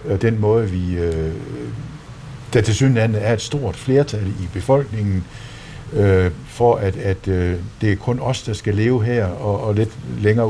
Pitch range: 95-125 Hz